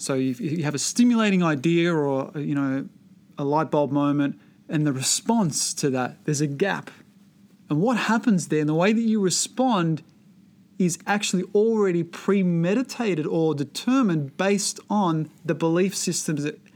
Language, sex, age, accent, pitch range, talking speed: English, male, 30-49, Australian, 150-195 Hz, 160 wpm